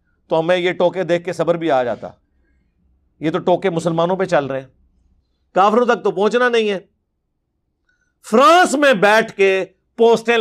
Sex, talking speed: male, 165 wpm